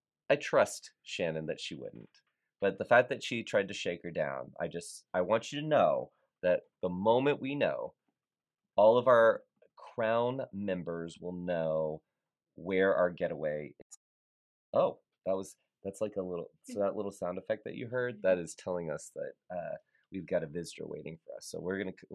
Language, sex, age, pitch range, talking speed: English, male, 30-49, 85-110 Hz, 190 wpm